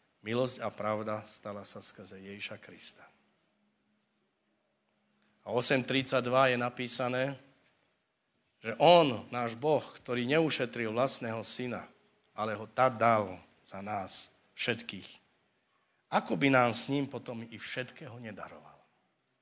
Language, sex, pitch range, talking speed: Slovak, male, 115-145 Hz, 110 wpm